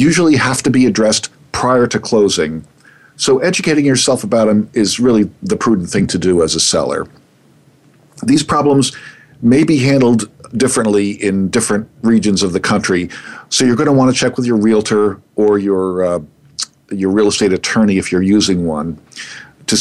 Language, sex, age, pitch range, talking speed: English, male, 50-69, 100-130 Hz, 175 wpm